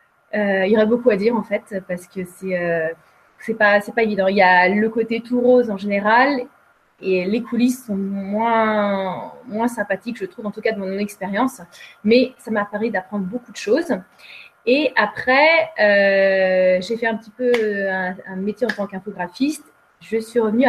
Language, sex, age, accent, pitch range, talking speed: French, female, 30-49, French, 195-245 Hz, 195 wpm